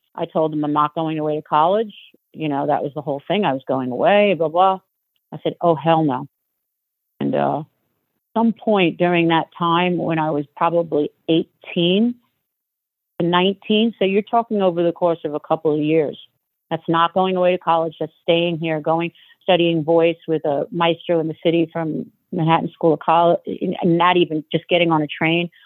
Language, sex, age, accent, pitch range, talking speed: English, female, 40-59, American, 150-175 Hz, 190 wpm